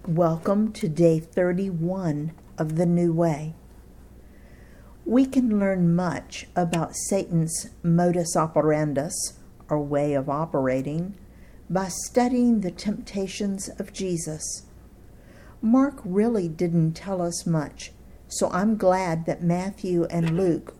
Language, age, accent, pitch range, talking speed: English, 50-69, American, 165-200 Hz, 115 wpm